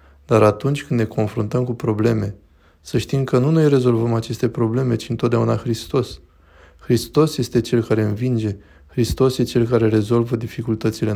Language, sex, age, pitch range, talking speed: Romanian, male, 20-39, 110-125 Hz, 155 wpm